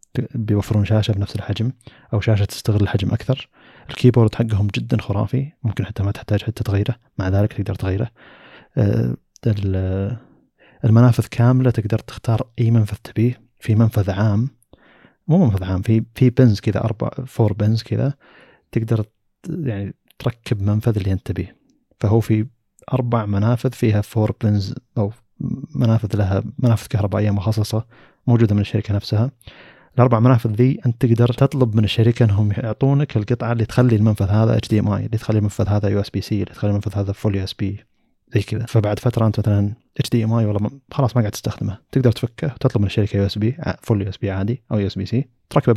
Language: Arabic